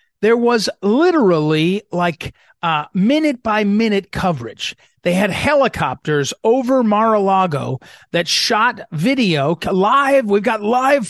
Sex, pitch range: male, 160-220 Hz